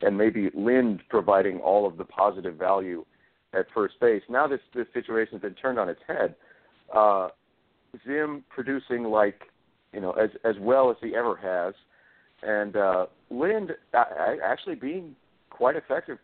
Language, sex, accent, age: English, male, American, 50-69